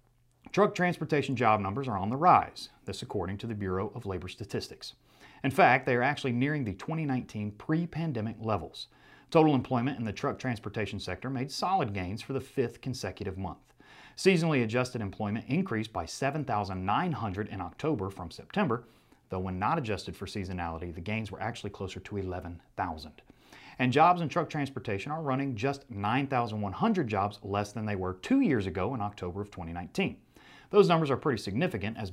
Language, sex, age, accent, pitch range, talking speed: English, male, 30-49, American, 95-135 Hz, 170 wpm